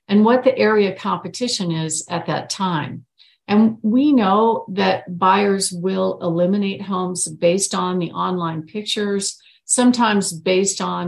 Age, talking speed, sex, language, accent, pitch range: 50-69, 140 wpm, female, English, American, 175-225 Hz